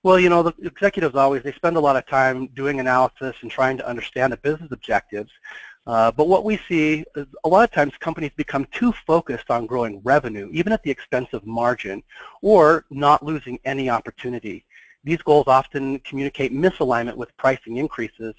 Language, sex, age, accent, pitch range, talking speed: English, male, 40-59, American, 120-170 Hz, 185 wpm